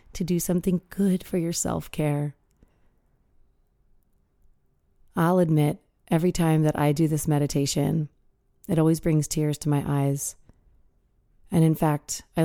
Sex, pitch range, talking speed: female, 140-170 Hz, 135 wpm